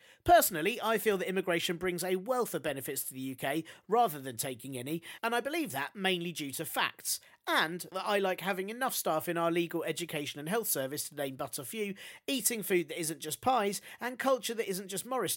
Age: 40-59